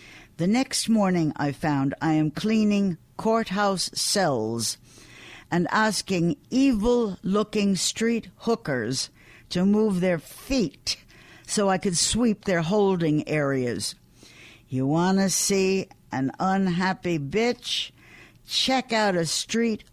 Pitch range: 140-205 Hz